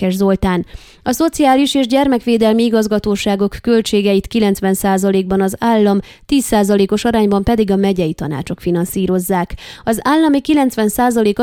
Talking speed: 105 wpm